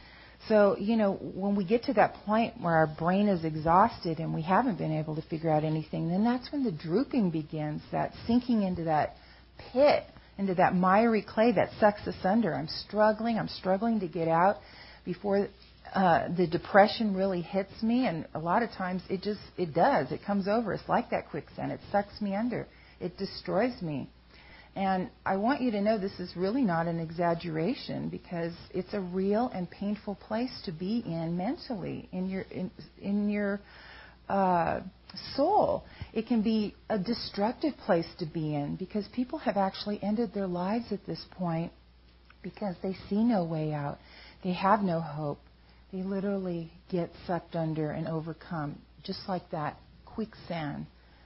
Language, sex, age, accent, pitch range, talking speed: English, female, 40-59, American, 165-210 Hz, 175 wpm